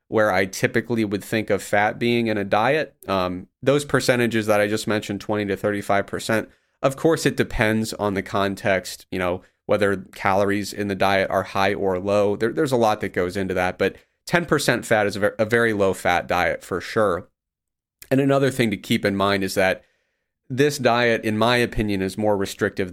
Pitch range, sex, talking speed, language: 95-115 Hz, male, 200 wpm, English